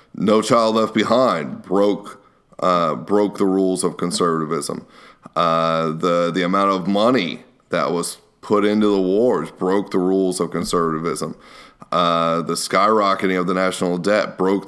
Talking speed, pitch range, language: 145 wpm, 90-105 Hz, English